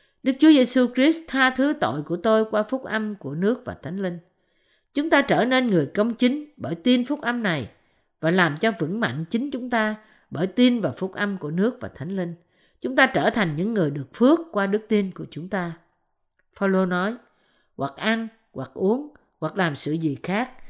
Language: Vietnamese